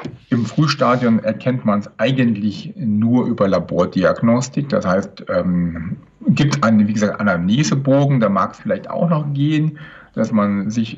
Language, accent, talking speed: German, German, 150 wpm